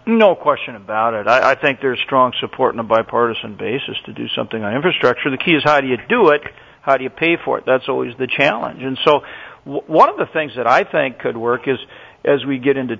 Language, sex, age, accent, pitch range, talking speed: English, male, 50-69, American, 115-135 Hz, 245 wpm